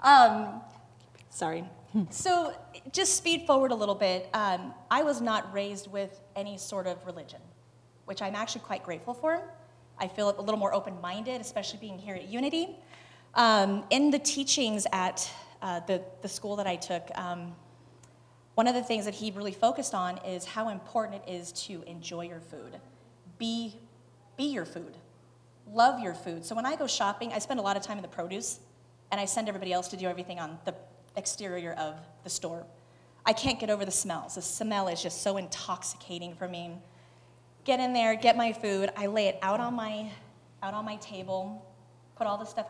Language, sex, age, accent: English, female, 30-49, American